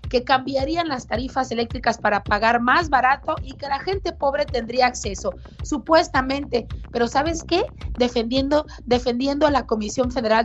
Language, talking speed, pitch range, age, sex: Spanish, 150 wpm, 230-290 Hz, 30-49, female